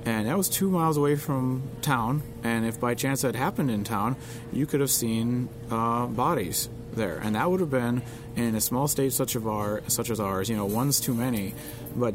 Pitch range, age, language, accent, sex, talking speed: 105-130 Hz, 30-49, English, American, male, 220 wpm